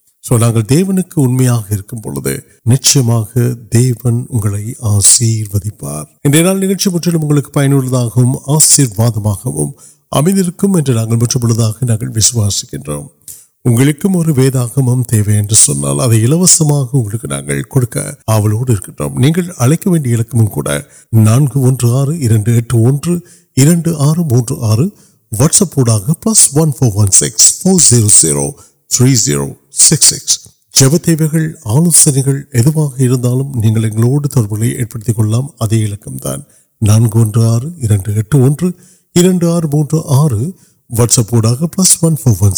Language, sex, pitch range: Urdu, male, 110-150 Hz